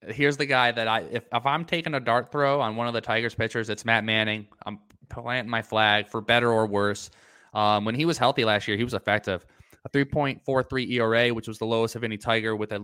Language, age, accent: English, 20-39, American